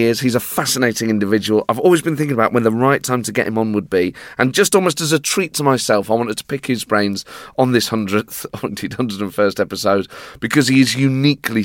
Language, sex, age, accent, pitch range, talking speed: English, male, 30-49, British, 105-150 Hz, 225 wpm